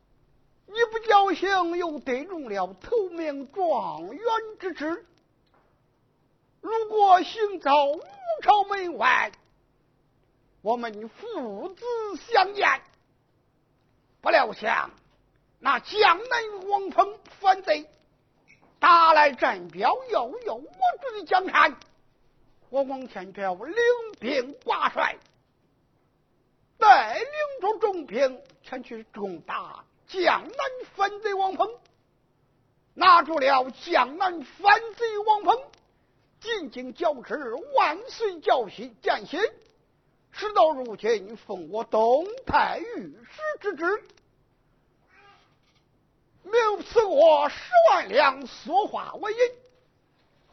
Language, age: Chinese, 50-69